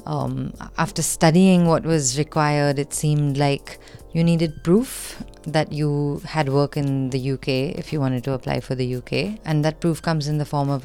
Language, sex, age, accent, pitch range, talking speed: English, female, 30-49, Indian, 140-160 Hz, 195 wpm